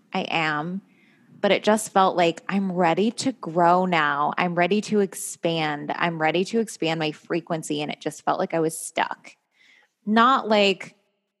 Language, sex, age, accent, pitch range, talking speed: English, female, 20-39, American, 155-195 Hz, 170 wpm